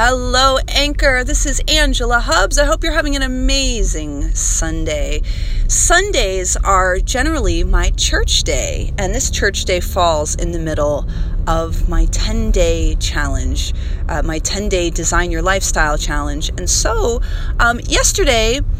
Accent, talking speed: American, 135 wpm